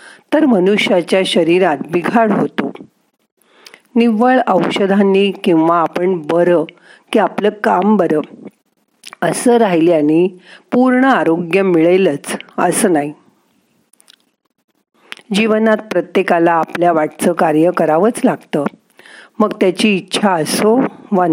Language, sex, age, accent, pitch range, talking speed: Marathi, female, 50-69, native, 165-215 Hz, 95 wpm